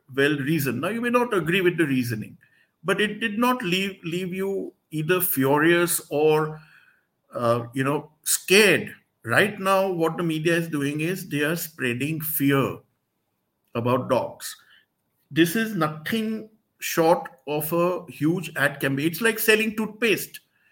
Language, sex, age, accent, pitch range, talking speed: English, male, 50-69, Indian, 145-195 Hz, 150 wpm